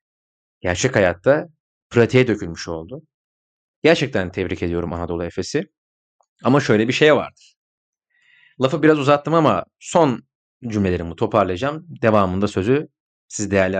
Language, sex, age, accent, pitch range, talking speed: Turkish, male, 40-59, native, 105-160 Hz, 115 wpm